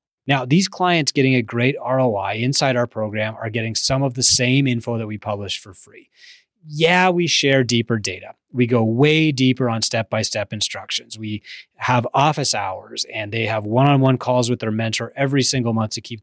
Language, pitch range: English, 115-140 Hz